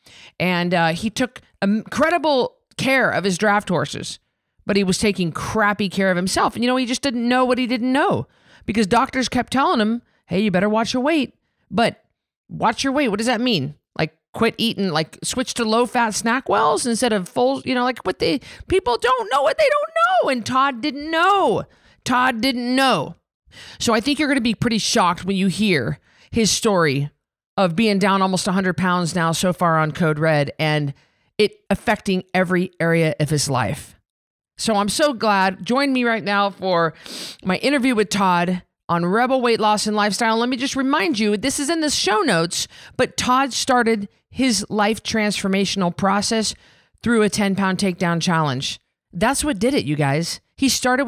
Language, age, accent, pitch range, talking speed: English, 40-59, American, 185-255 Hz, 195 wpm